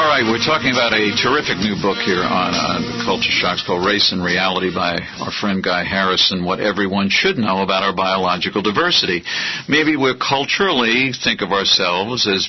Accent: American